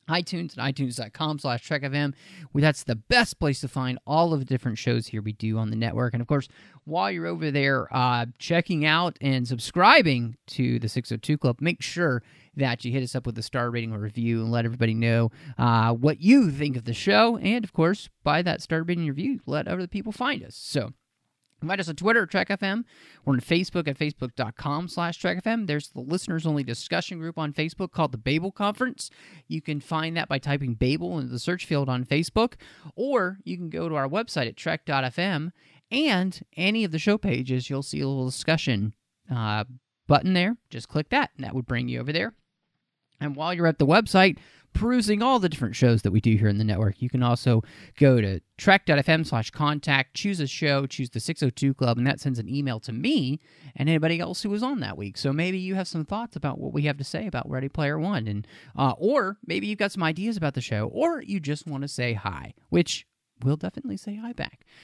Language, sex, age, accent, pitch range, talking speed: English, male, 30-49, American, 125-170 Hz, 215 wpm